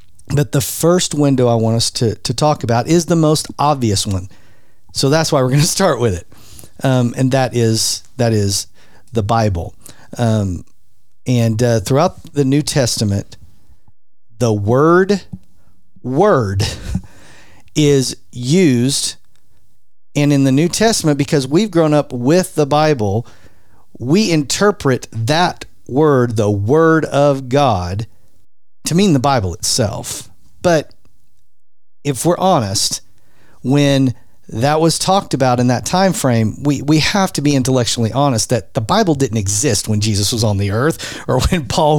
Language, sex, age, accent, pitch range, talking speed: English, male, 40-59, American, 105-145 Hz, 145 wpm